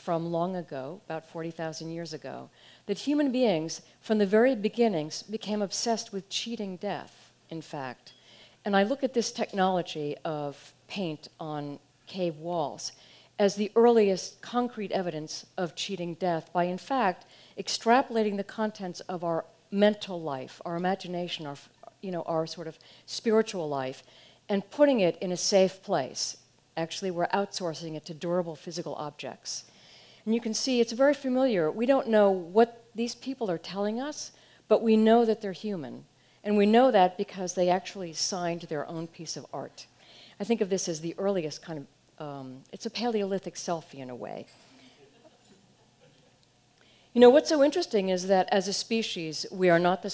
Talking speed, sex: 165 wpm, female